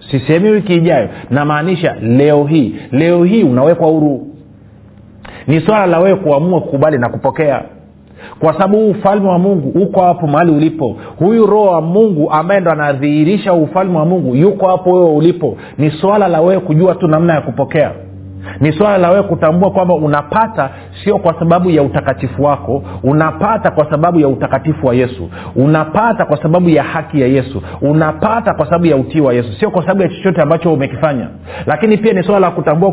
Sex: male